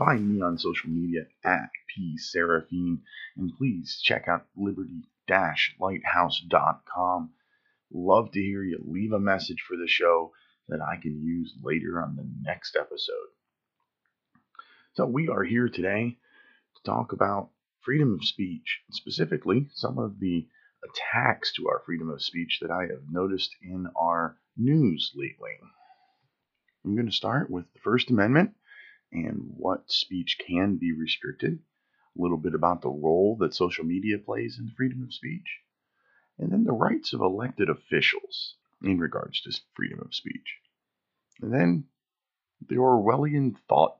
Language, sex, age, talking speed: English, male, 30-49, 145 wpm